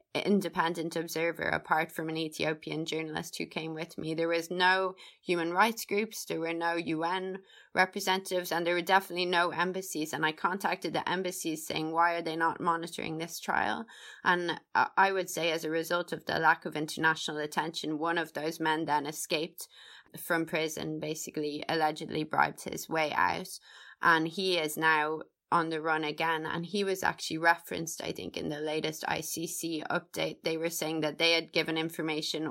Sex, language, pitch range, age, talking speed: female, English, 160-180 Hz, 20-39, 175 wpm